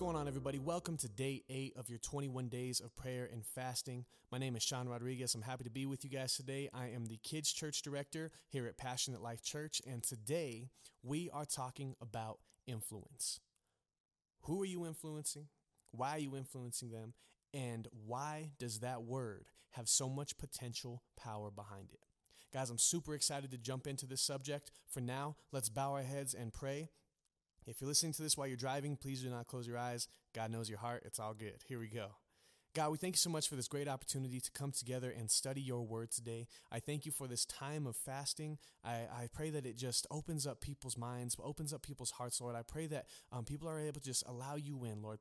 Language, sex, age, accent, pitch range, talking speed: English, male, 30-49, American, 120-150 Hz, 215 wpm